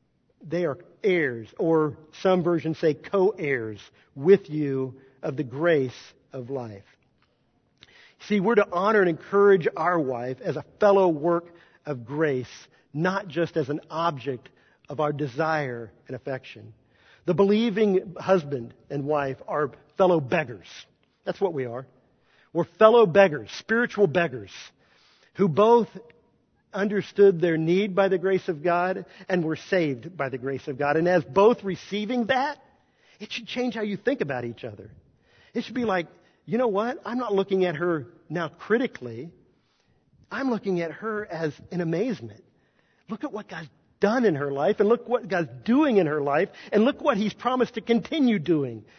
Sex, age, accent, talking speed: male, 50-69, American, 165 wpm